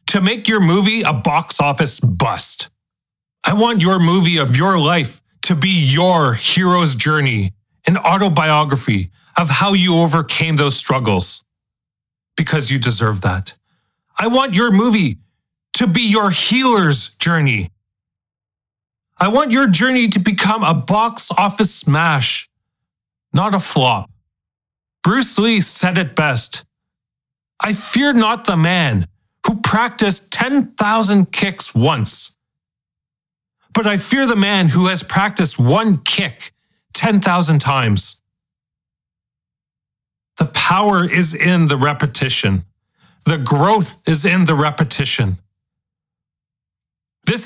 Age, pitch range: 30-49, 130-195 Hz